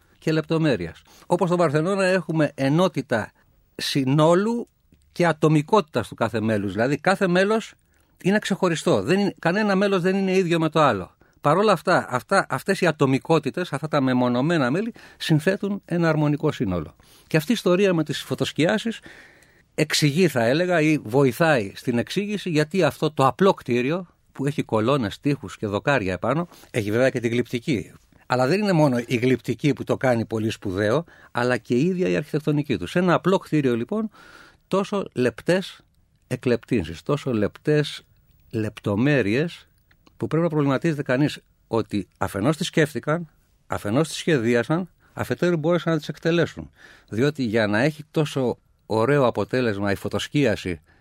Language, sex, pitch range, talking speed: Greek, male, 120-170 Hz, 150 wpm